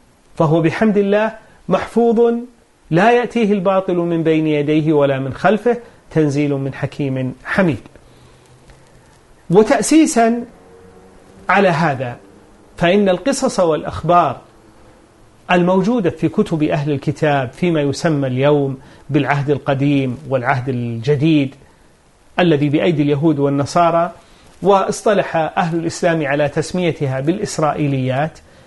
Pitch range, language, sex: 140-195 Hz, Arabic, male